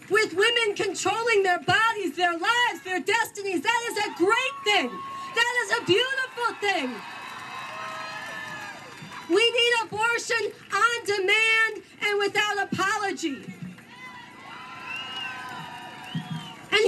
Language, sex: English, female